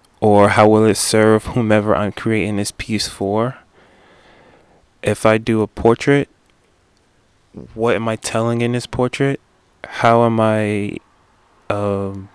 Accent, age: American, 20-39